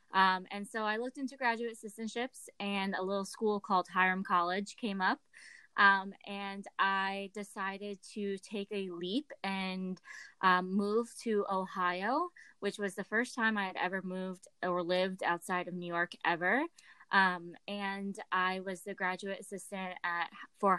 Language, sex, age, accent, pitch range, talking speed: English, female, 20-39, American, 180-205 Hz, 160 wpm